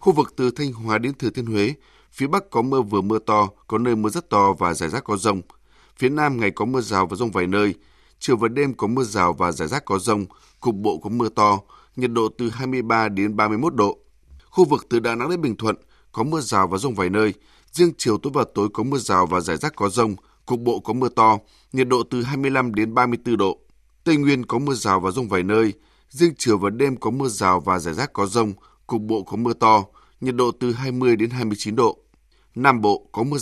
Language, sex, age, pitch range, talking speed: Vietnamese, male, 20-39, 105-130 Hz, 245 wpm